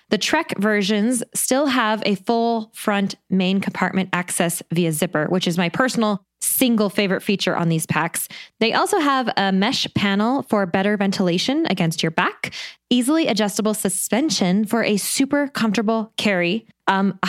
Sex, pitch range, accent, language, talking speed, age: female, 185-235 Hz, American, English, 155 wpm, 20-39